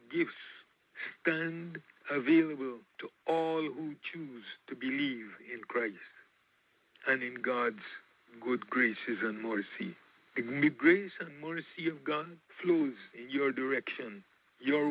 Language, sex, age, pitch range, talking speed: English, male, 60-79, 140-175 Hz, 115 wpm